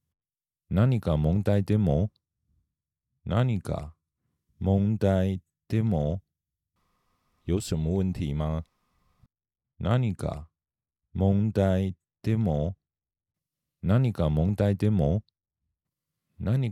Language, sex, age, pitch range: Japanese, male, 40-59, 80-105 Hz